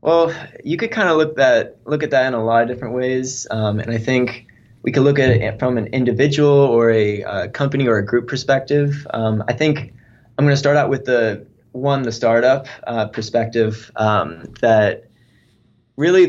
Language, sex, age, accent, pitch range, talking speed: English, male, 20-39, American, 105-130 Hz, 195 wpm